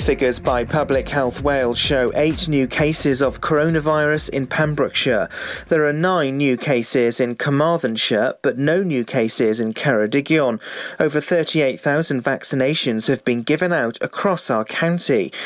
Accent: British